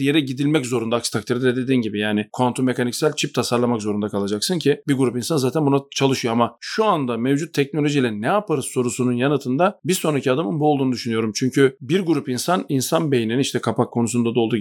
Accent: native